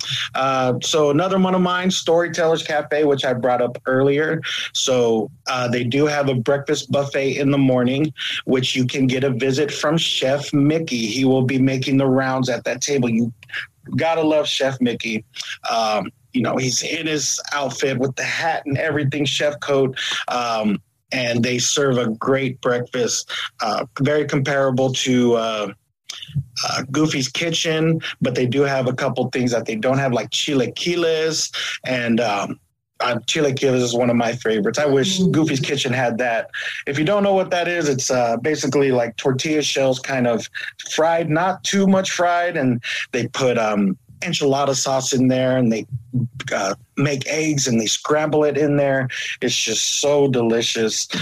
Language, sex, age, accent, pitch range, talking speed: English, male, 30-49, American, 125-150 Hz, 170 wpm